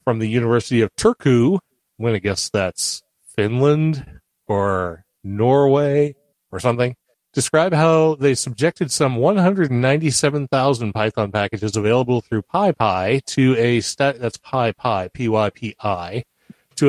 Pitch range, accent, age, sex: 110-145 Hz, American, 40-59, male